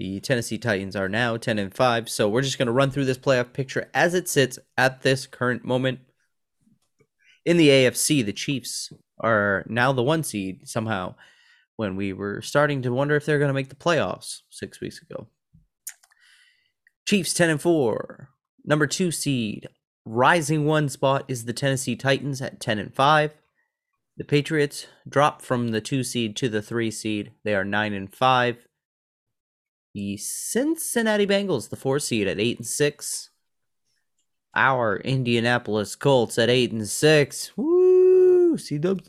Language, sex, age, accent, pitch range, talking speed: English, male, 30-49, American, 115-155 Hz, 150 wpm